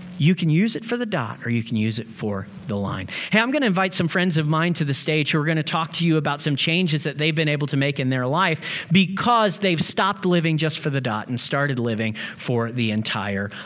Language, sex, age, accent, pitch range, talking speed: English, male, 40-59, American, 140-190 Hz, 265 wpm